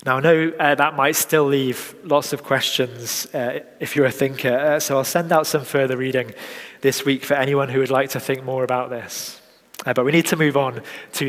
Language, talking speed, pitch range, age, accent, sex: English, 235 wpm, 130-155 Hz, 20-39, British, male